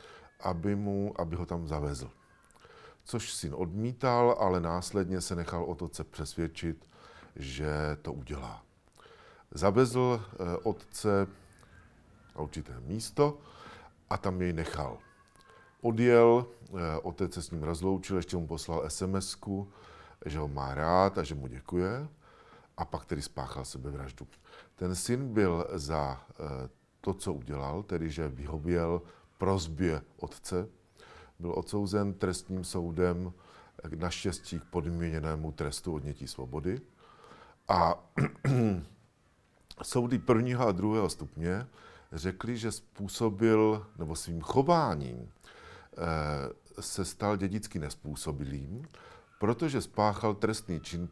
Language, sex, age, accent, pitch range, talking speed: Czech, male, 50-69, native, 80-105 Hz, 105 wpm